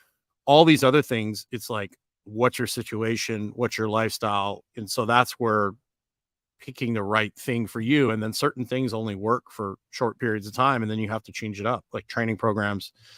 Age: 40-59